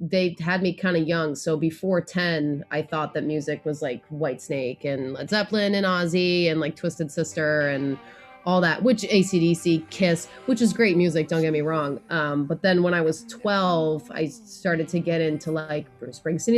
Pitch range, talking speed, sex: 155-190 Hz, 200 wpm, female